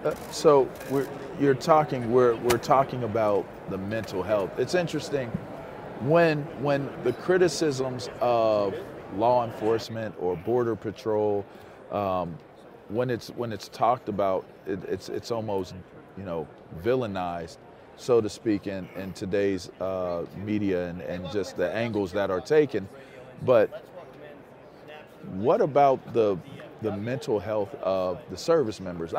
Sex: male